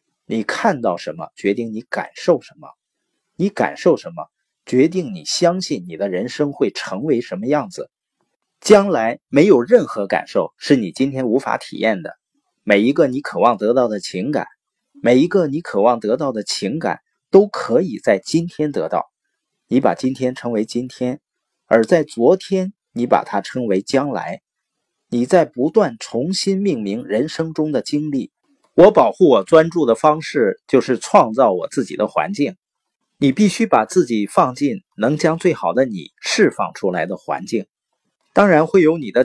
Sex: male